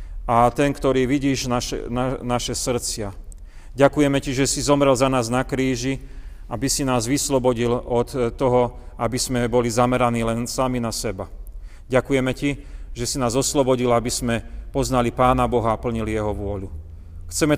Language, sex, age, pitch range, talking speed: Slovak, male, 40-59, 105-135 Hz, 160 wpm